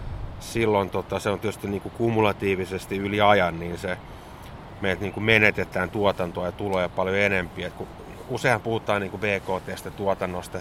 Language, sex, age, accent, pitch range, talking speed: Finnish, male, 30-49, native, 90-110 Hz, 145 wpm